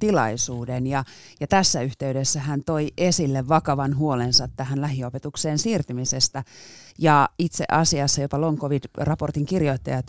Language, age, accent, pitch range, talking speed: Finnish, 30-49, native, 125-160 Hz, 115 wpm